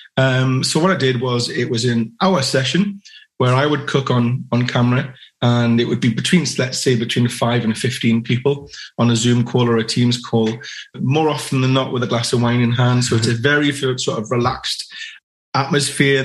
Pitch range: 125-155 Hz